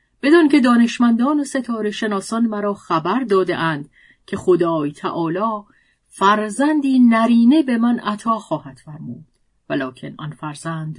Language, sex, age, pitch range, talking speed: Persian, female, 40-59, 165-235 Hz, 120 wpm